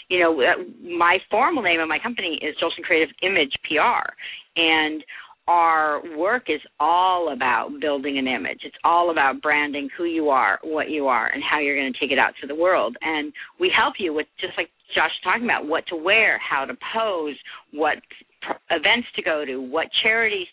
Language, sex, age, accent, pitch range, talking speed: English, female, 40-59, American, 155-210 Hz, 195 wpm